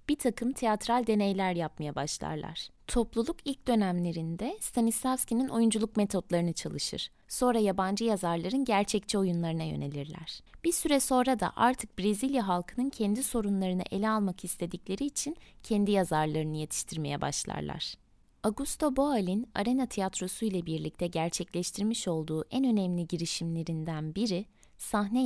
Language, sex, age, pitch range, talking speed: Turkish, female, 20-39, 175-235 Hz, 115 wpm